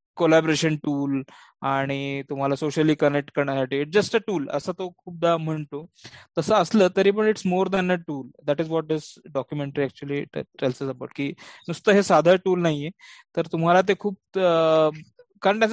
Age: 20-39